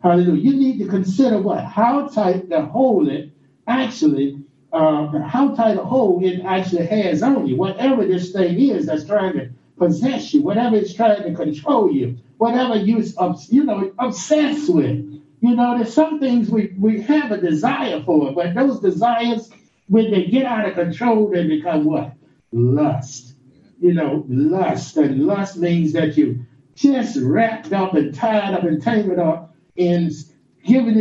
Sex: male